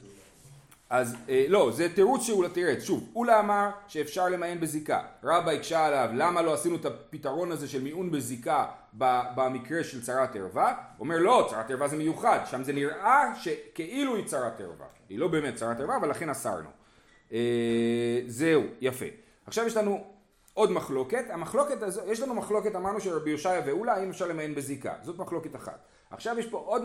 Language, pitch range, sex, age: Hebrew, 145-230 Hz, male, 30-49